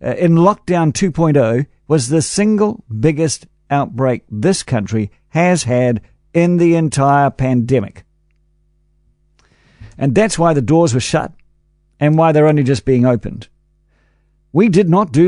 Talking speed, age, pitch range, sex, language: 140 wpm, 50-69, 125-175 Hz, male, English